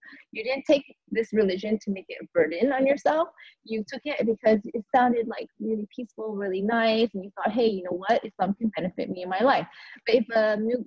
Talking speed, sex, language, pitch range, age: 225 wpm, female, English, 190-245 Hz, 20-39